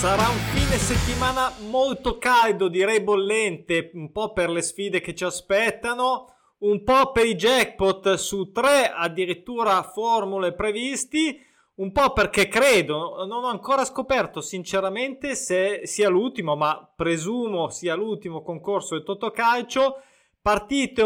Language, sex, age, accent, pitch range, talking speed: Italian, male, 20-39, native, 180-245 Hz, 130 wpm